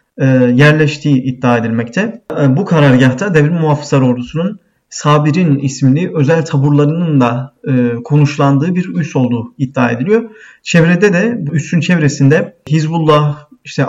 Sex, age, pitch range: male, 40-59, 130-165 Hz